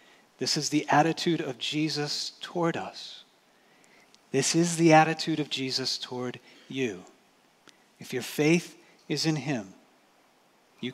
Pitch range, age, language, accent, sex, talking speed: 125-155 Hz, 40-59, English, American, male, 125 wpm